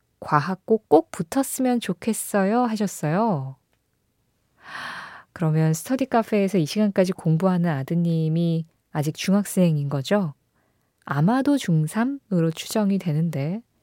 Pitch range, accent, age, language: 160-235 Hz, native, 20-39, Korean